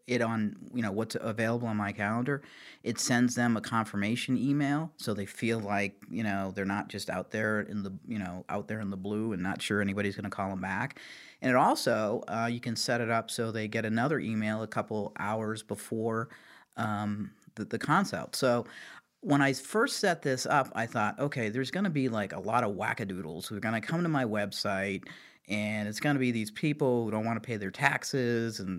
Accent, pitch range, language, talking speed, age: American, 105-135 Hz, English, 225 wpm, 40-59